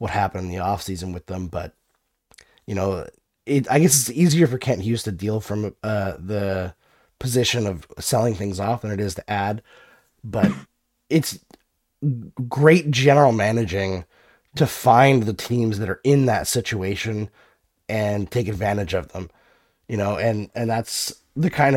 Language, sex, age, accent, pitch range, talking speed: English, male, 30-49, American, 100-130 Hz, 165 wpm